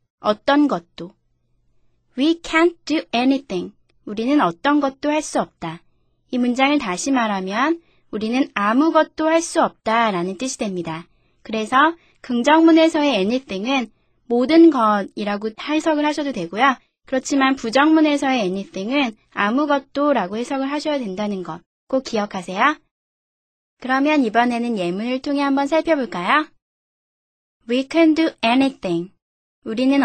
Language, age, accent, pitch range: Korean, 20-39, native, 195-285 Hz